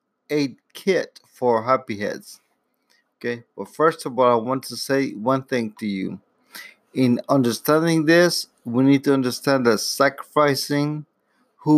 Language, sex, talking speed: English, male, 150 wpm